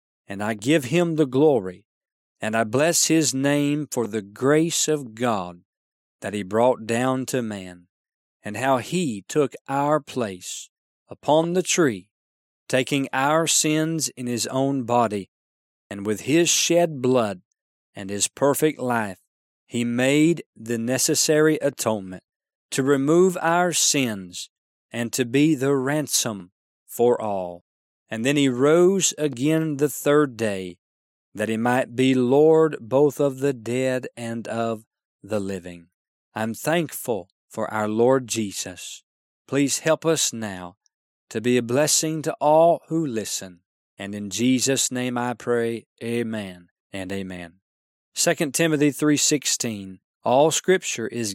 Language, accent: English, American